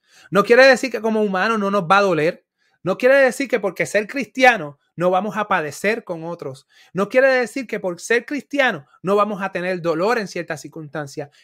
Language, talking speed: Spanish, 205 wpm